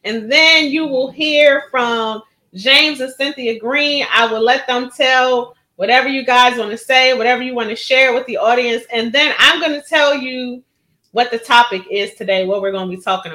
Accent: American